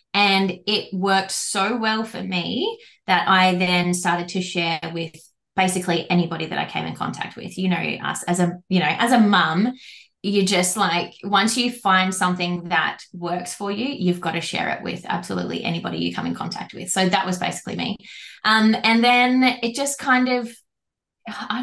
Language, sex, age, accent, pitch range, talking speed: English, female, 20-39, Australian, 175-205 Hz, 190 wpm